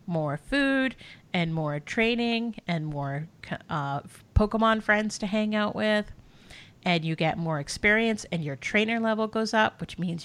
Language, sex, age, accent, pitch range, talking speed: English, female, 30-49, American, 155-195 Hz, 160 wpm